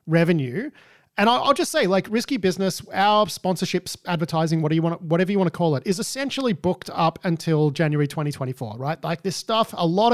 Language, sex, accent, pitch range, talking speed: English, male, Australian, 150-190 Hz, 200 wpm